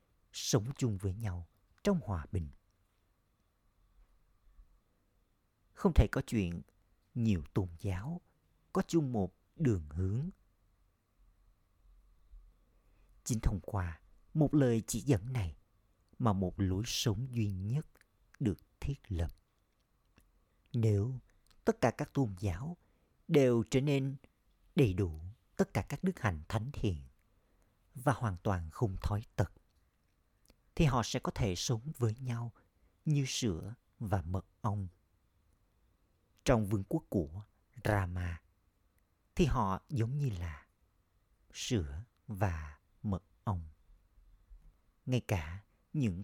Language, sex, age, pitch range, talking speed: Vietnamese, male, 50-69, 90-120 Hz, 115 wpm